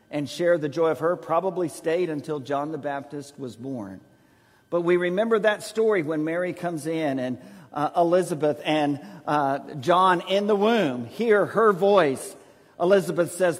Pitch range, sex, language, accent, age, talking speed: 130-185 Hz, male, English, American, 50-69, 165 wpm